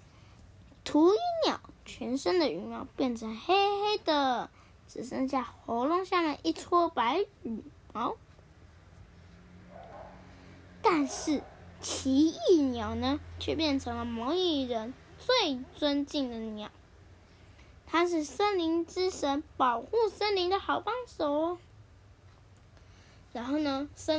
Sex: female